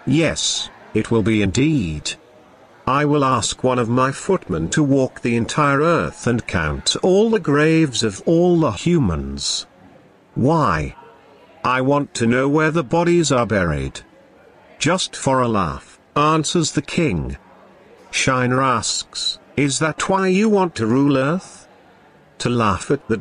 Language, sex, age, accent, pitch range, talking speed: English, male, 50-69, British, 110-155 Hz, 145 wpm